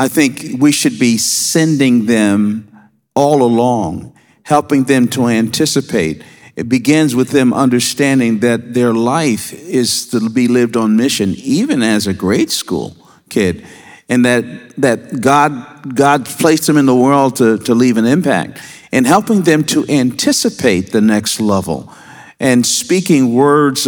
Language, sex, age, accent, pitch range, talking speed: English, male, 50-69, American, 115-150 Hz, 150 wpm